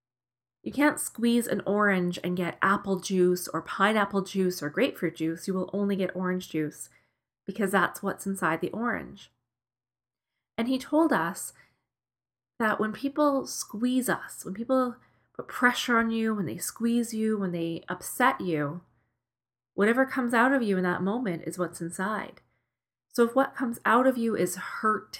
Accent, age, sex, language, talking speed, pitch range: American, 30-49, female, English, 165 wpm, 160-215 Hz